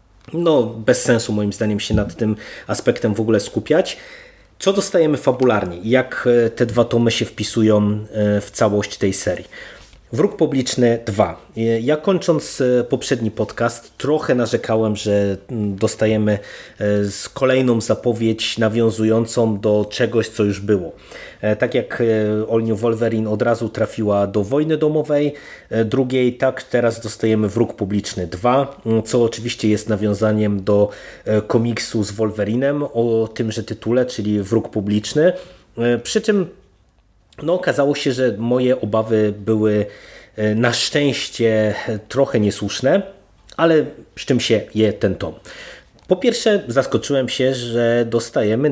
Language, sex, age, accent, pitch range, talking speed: Polish, male, 30-49, native, 105-120 Hz, 125 wpm